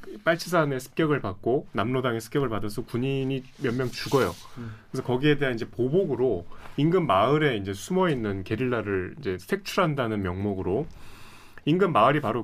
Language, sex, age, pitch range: Korean, male, 30-49, 105-150 Hz